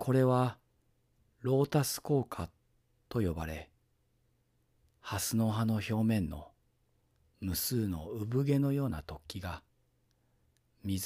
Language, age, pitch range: Japanese, 40-59, 90-110 Hz